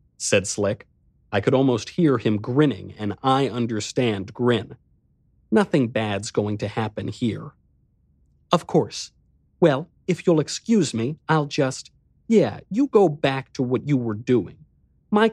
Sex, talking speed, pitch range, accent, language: male, 145 wpm, 105-135 Hz, American, English